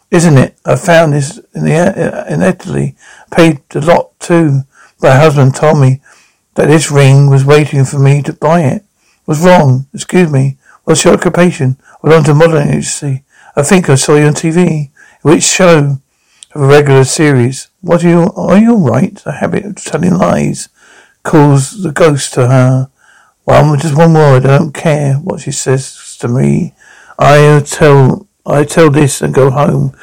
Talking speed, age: 180 wpm, 60-79